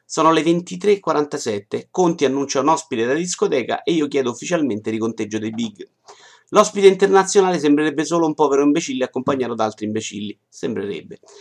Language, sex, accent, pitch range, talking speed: Italian, male, native, 125-175 Hz, 155 wpm